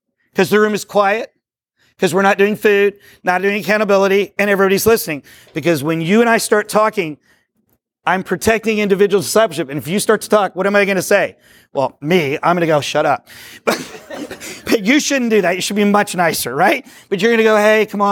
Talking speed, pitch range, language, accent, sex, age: 215 wpm, 175-220 Hz, English, American, male, 40-59